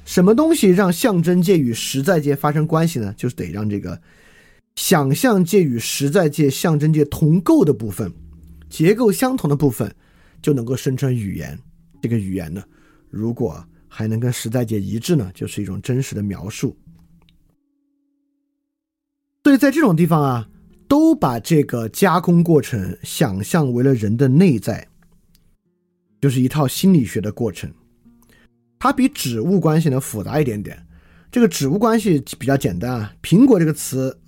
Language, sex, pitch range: Chinese, male, 110-165 Hz